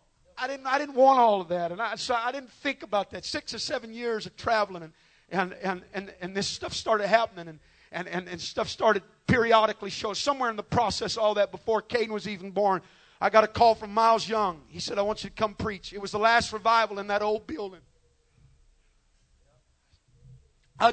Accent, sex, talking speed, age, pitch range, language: American, male, 220 wpm, 50-69, 175-220 Hz, English